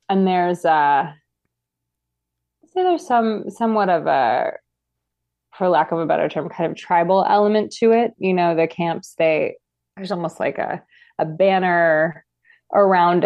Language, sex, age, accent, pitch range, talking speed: English, female, 20-39, American, 155-185 Hz, 160 wpm